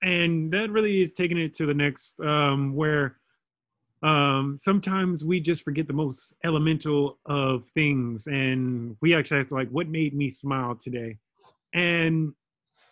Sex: male